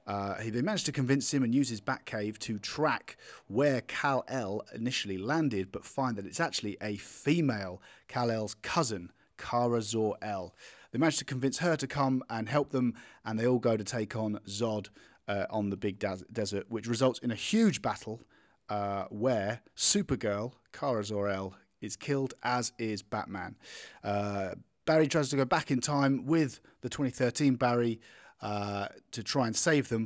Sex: male